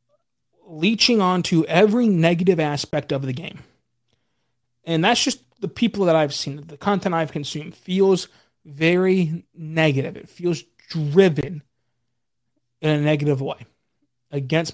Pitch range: 145-185 Hz